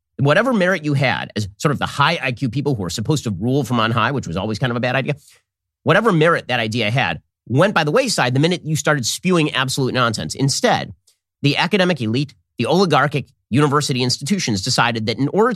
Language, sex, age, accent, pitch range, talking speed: English, male, 30-49, American, 115-160 Hz, 210 wpm